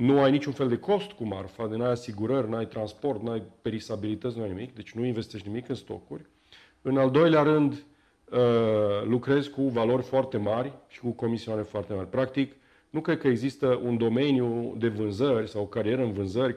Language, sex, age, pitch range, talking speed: Romanian, male, 40-59, 105-140 Hz, 190 wpm